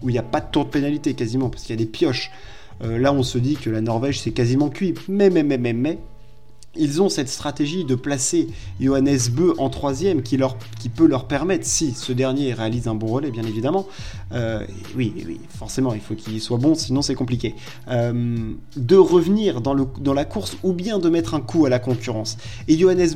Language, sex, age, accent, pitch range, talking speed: French, male, 20-39, French, 125-165 Hz, 230 wpm